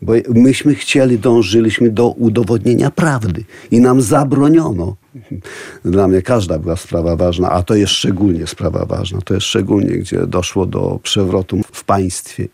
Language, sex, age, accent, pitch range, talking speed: Polish, male, 40-59, native, 95-115 Hz, 150 wpm